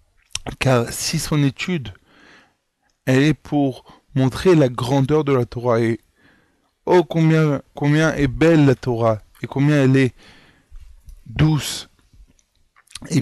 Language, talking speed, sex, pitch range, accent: French, 125 wpm, male, 120-150 Hz, French